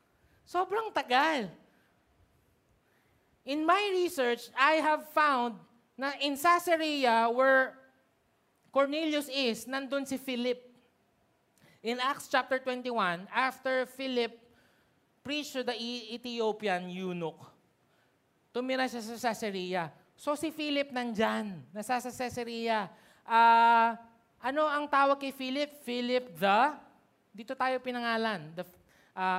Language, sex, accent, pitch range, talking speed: Filipino, male, native, 185-255 Hz, 105 wpm